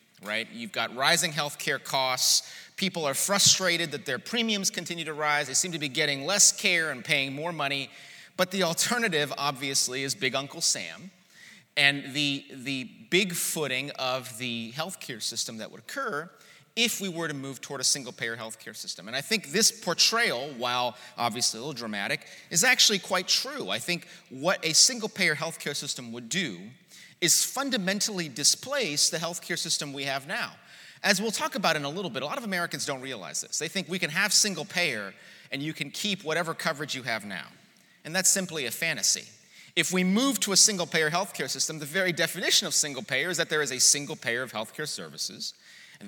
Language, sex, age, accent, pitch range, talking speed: English, male, 30-49, American, 135-190 Hz, 200 wpm